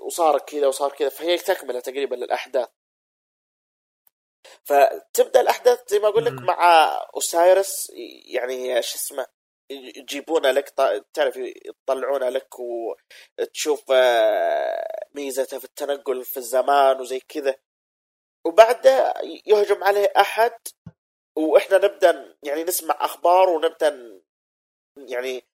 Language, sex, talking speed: Arabic, male, 100 wpm